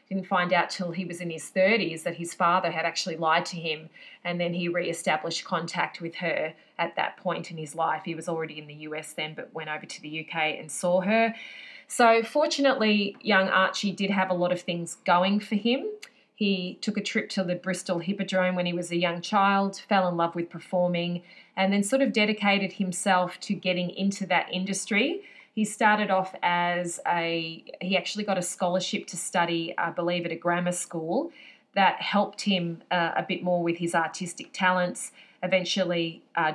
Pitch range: 175-200 Hz